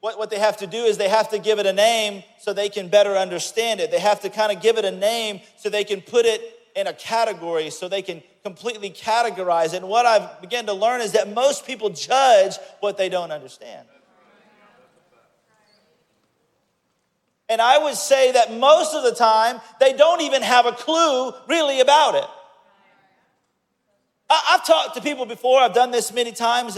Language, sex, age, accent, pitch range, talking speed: English, male, 40-59, American, 210-300 Hz, 195 wpm